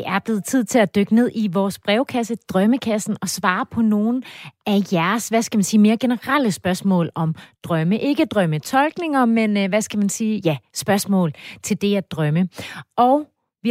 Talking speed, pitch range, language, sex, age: 185 wpm, 180-240 Hz, Danish, female, 30-49